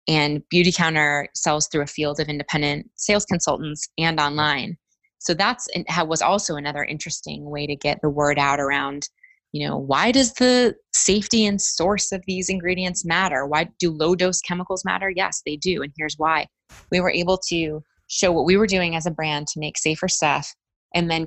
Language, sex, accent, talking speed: English, female, American, 190 wpm